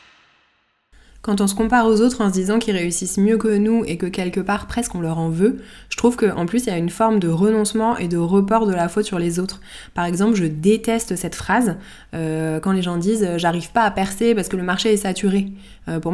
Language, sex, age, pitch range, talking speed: French, female, 20-39, 175-215 Hz, 240 wpm